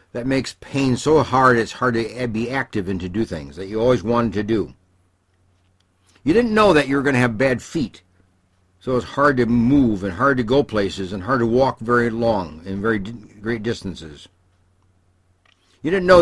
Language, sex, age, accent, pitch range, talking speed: English, male, 60-79, American, 90-130 Hz, 195 wpm